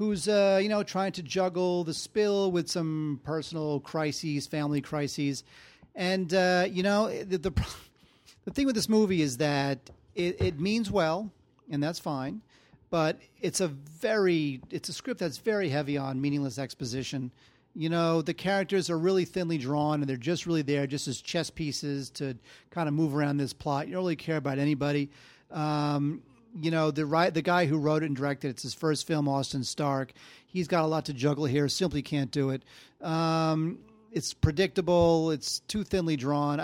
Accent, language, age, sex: American, English, 40-59, male